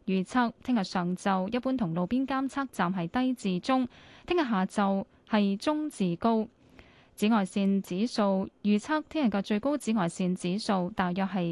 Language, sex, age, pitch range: Chinese, female, 10-29, 185-240 Hz